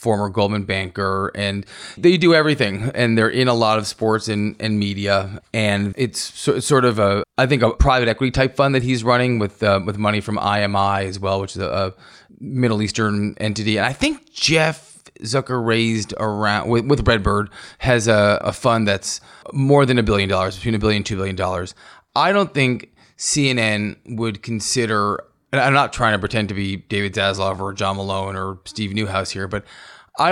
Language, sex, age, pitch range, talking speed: English, male, 20-39, 100-130 Hz, 195 wpm